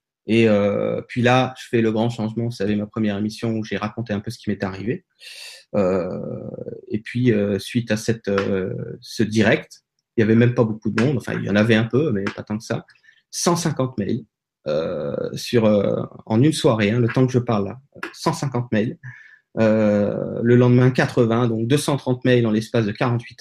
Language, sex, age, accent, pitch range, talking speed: French, male, 30-49, French, 110-130 Hz, 210 wpm